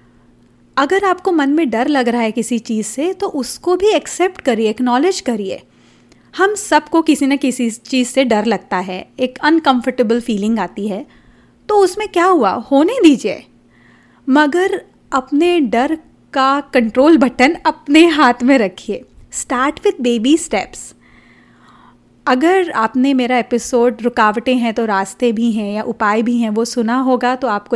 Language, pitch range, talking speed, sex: Hindi, 225-285 Hz, 155 wpm, female